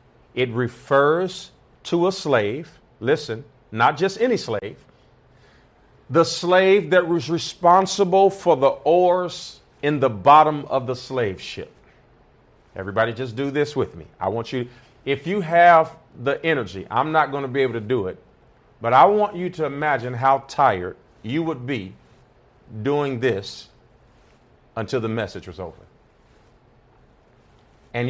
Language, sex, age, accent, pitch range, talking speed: English, male, 40-59, American, 125-165 Hz, 145 wpm